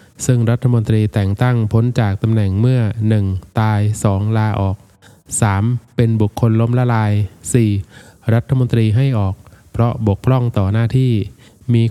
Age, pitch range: 20-39, 105-120 Hz